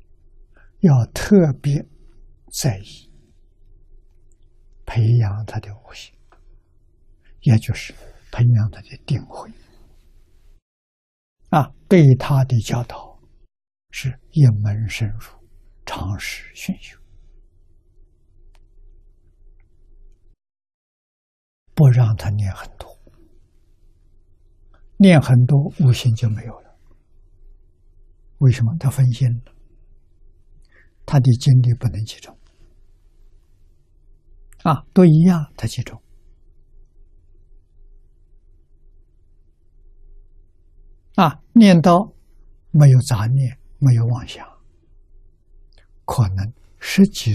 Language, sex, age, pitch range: Chinese, male, 60-79, 80-120 Hz